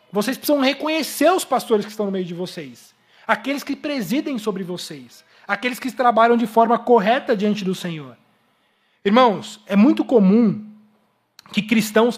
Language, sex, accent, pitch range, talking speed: Portuguese, male, Brazilian, 200-245 Hz, 155 wpm